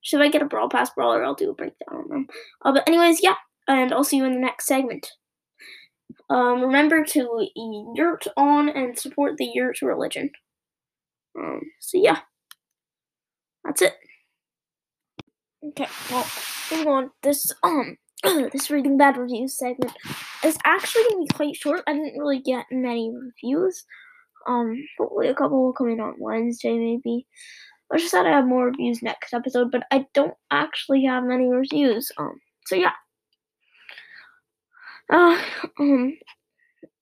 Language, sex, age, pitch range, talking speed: English, female, 10-29, 255-325 Hz, 150 wpm